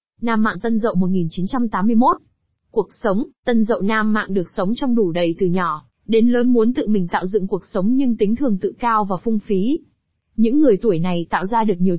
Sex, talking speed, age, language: female, 215 wpm, 20-39, Vietnamese